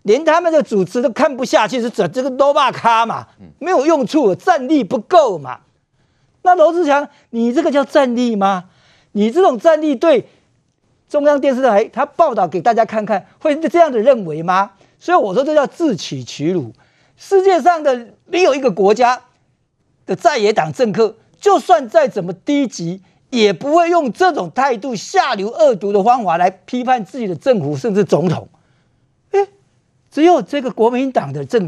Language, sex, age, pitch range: Chinese, male, 50-69, 215-320 Hz